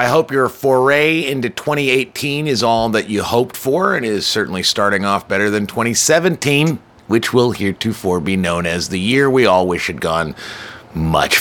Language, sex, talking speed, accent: English, male, 180 wpm, American